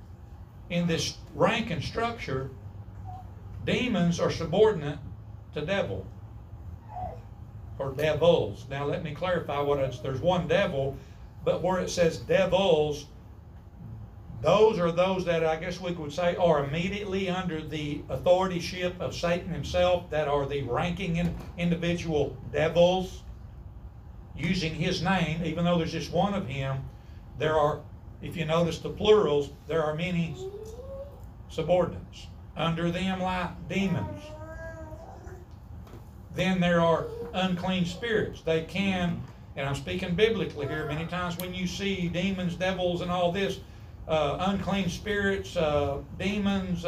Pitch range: 115-180 Hz